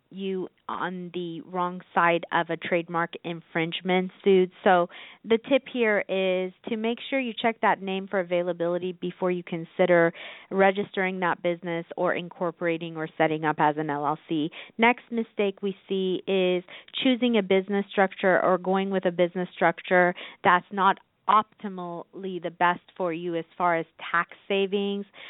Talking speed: 155 wpm